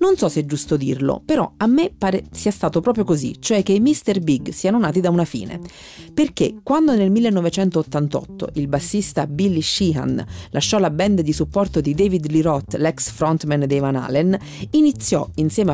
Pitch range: 145-220 Hz